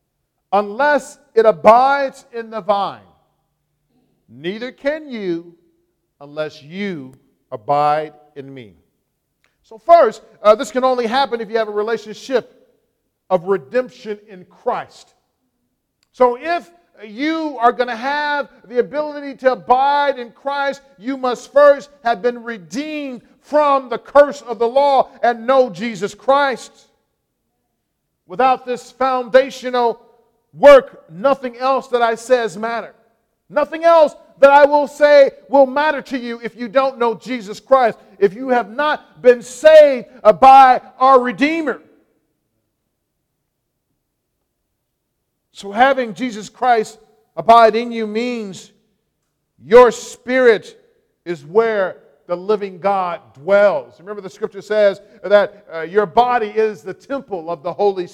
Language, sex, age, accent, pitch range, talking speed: English, male, 50-69, American, 210-275 Hz, 130 wpm